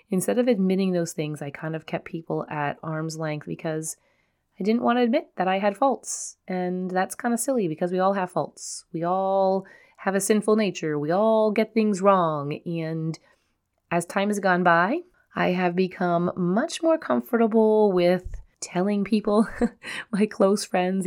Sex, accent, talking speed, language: female, American, 175 wpm, English